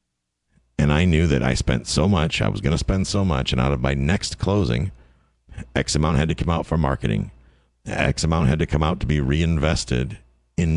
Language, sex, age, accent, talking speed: English, male, 50-69, American, 215 wpm